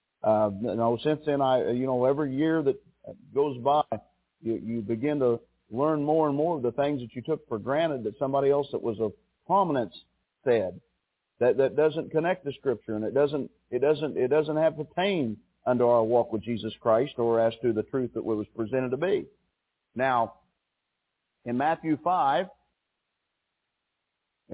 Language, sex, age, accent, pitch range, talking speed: English, male, 50-69, American, 120-155 Hz, 180 wpm